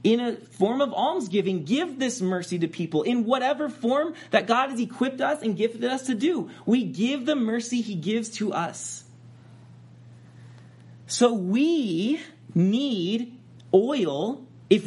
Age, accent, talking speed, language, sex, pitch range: 30-49, American, 145 wpm, English, male, 145-240 Hz